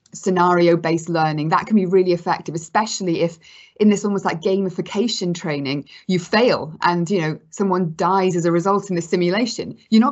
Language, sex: English, female